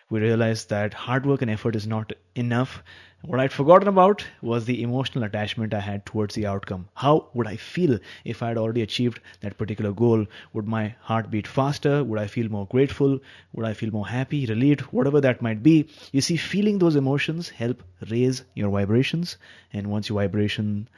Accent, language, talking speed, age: Indian, English, 195 wpm, 30-49